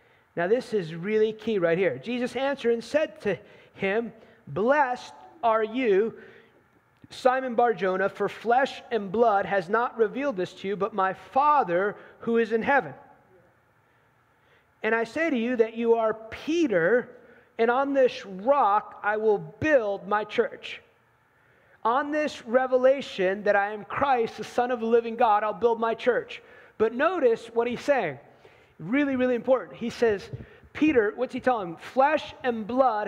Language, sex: English, male